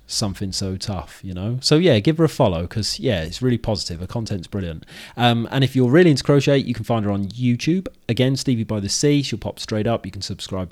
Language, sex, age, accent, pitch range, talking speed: English, male, 30-49, British, 100-130 Hz, 245 wpm